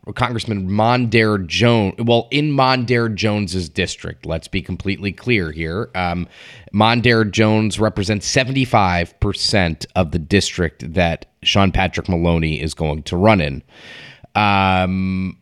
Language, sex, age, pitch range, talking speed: English, male, 30-49, 90-115 Hz, 125 wpm